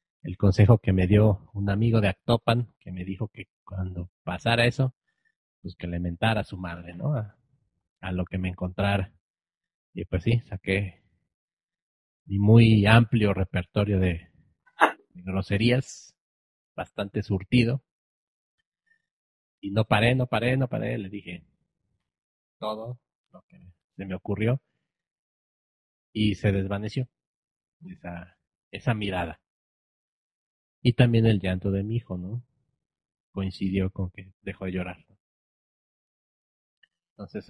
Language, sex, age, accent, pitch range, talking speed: Spanish, male, 40-59, Mexican, 95-115 Hz, 125 wpm